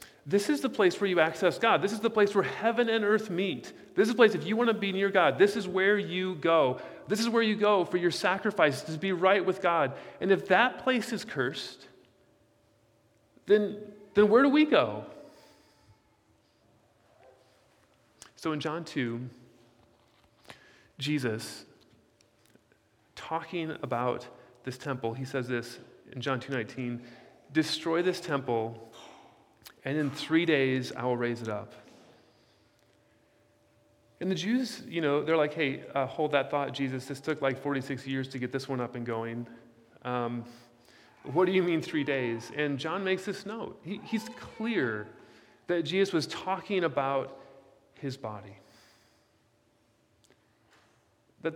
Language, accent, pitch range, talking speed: English, American, 125-190 Hz, 155 wpm